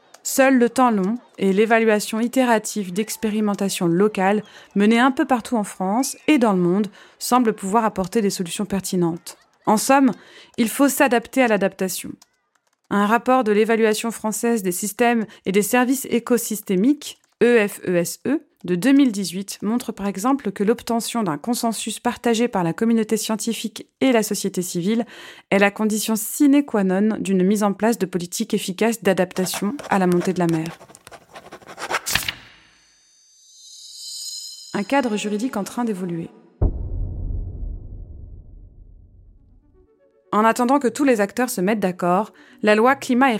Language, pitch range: French, 190-235 Hz